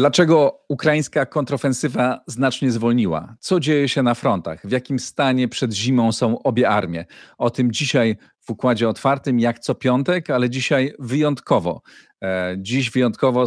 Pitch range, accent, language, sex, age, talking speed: 100-125 Hz, native, Polish, male, 40-59, 145 wpm